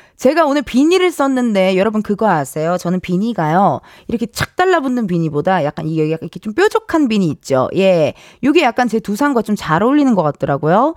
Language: Korean